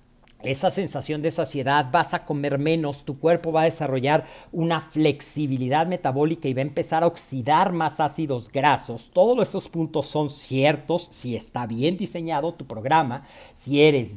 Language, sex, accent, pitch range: Spanish, male, Mexican, 140-190 Hz